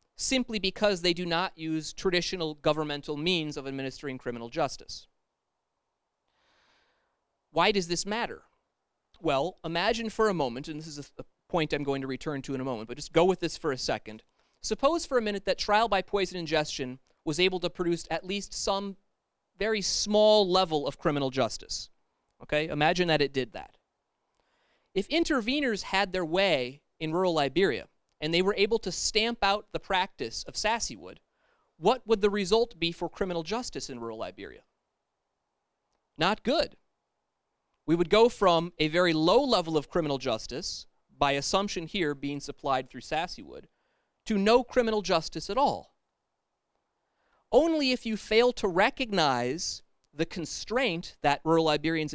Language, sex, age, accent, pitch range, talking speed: English, male, 30-49, American, 150-210 Hz, 160 wpm